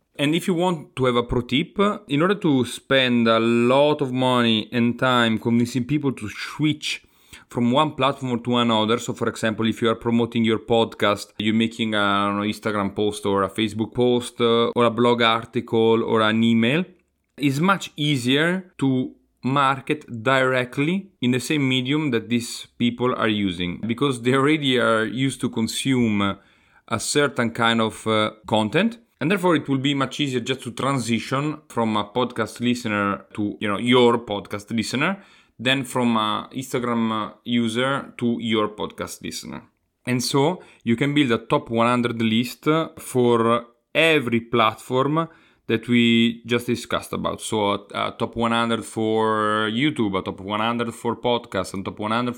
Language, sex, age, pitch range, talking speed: English, male, 30-49, 110-135 Hz, 160 wpm